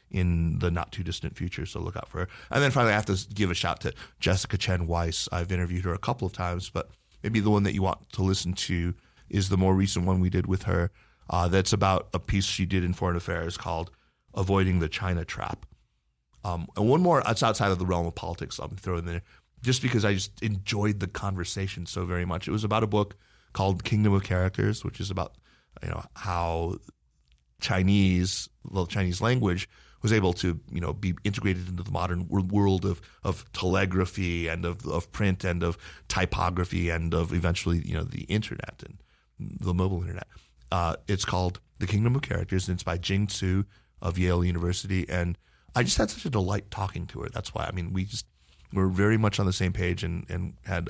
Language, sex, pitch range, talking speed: English, male, 85-100 Hz, 215 wpm